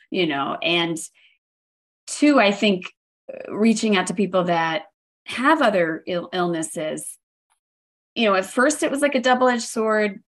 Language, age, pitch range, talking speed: English, 30-49, 175-225 Hz, 145 wpm